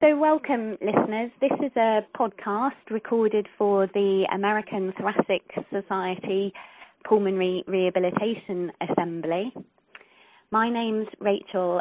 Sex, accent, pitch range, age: female, British, 175-215 Hz, 30-49